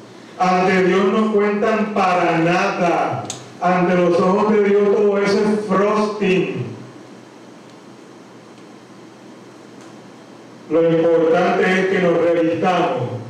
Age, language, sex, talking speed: 40-59, Spanish, male, 95 wpm